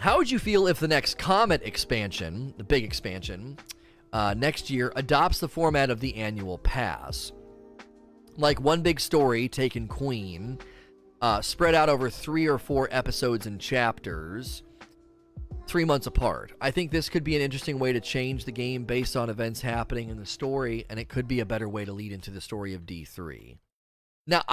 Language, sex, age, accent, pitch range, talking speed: English, male, 30-49, American, 110-145 Hz, 185 wpm